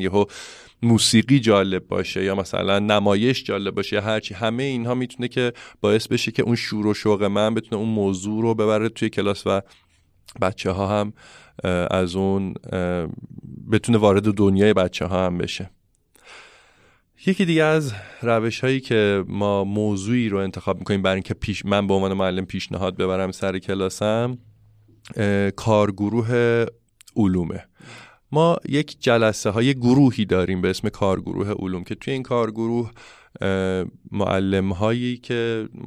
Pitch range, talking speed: 95-115 Hz, 140 wpm